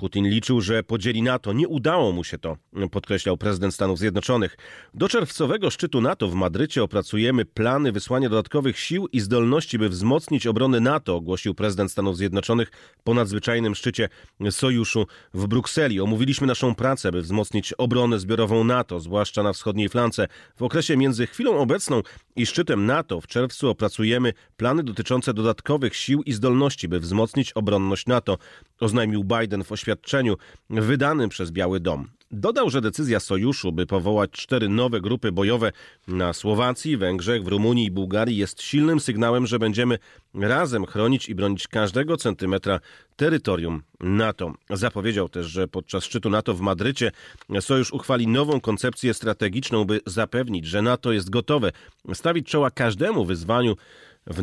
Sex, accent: male, native